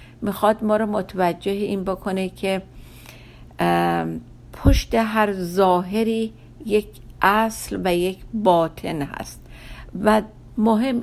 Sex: female